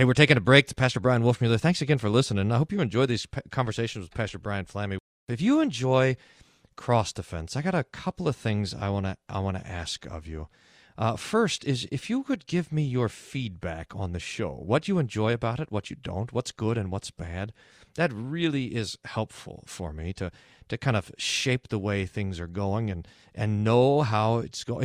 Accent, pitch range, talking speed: American, 100-135 Hz, 215 wpm